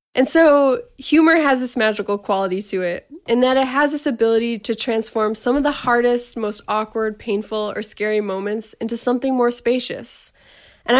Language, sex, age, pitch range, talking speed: English, female, 20-39, 215-255 Hz, 175 wpm